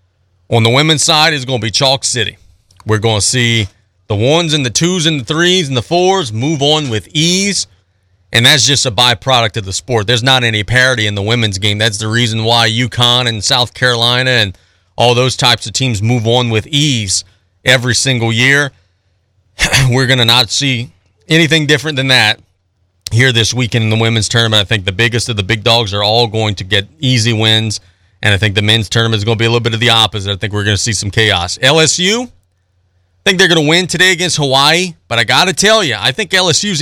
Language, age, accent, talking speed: English, 40-59, American, 230 wpm